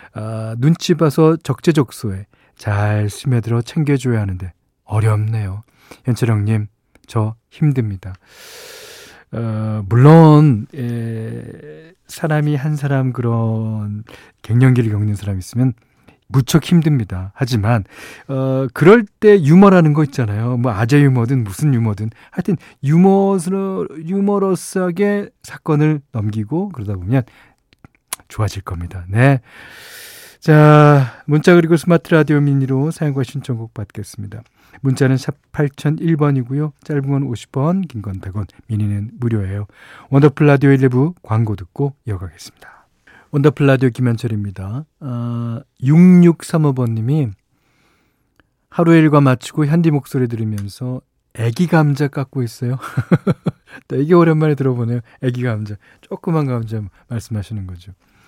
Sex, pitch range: male, 110-150 Hz